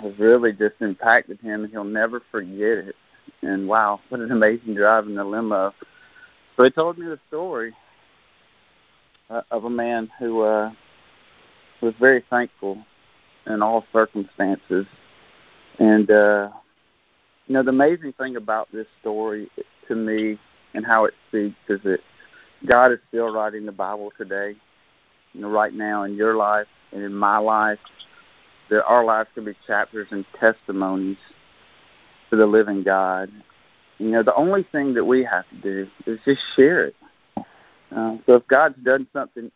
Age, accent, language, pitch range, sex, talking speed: 40-59, American, English, 105-120 Hz, male, 155 wpm